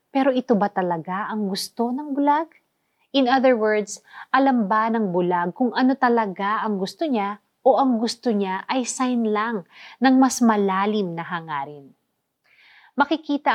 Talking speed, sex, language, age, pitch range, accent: 150 wpm, female, Filipino, 30-49, 195-245 Hz, native